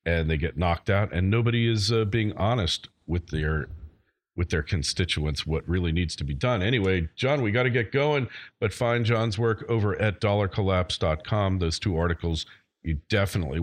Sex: male